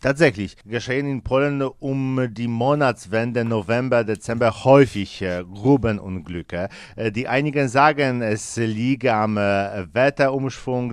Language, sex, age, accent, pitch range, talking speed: German, male, 50-69, German, 105-130 Hz, 100 wpm